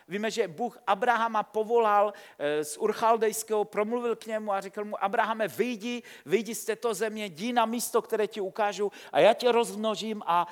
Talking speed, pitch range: 170 wpm, 190-230 Hz